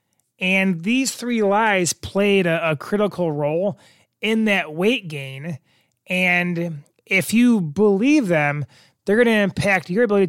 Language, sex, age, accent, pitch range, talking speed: English, male, 30-49, American, 150-210 Hz, 140 wpm